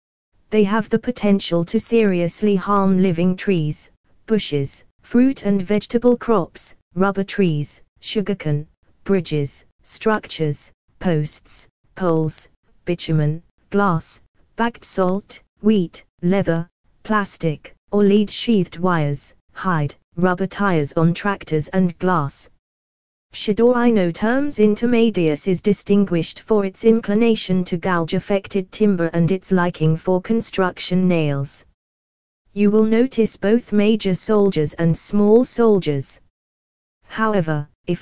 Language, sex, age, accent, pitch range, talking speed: English, female, 20-39, British, 160-205 Hz, 105 wpm